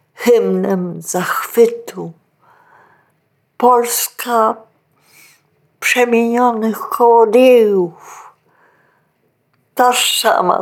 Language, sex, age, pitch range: Polish, female, 50-69, 175-245 Hz